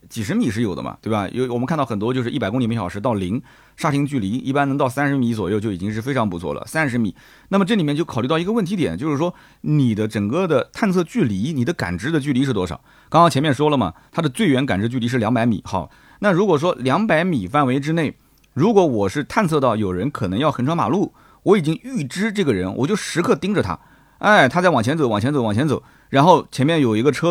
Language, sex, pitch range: Chinese, male, 115-170 Hz